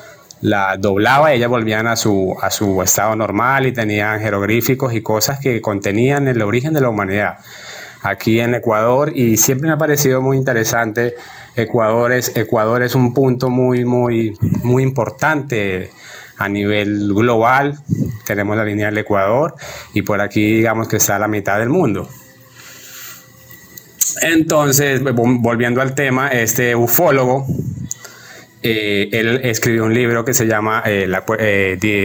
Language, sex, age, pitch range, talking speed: Spanish, male, 30-49, 105-130 Hz, 145 wpm